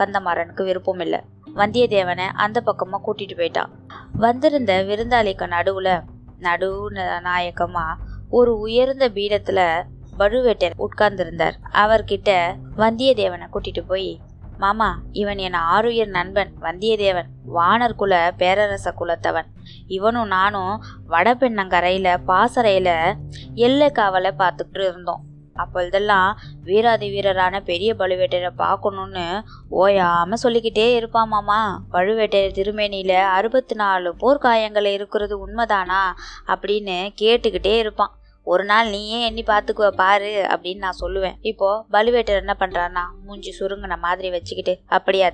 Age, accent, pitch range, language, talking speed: 20-39, native, 180-215 Hz, Tamil, 95 wpm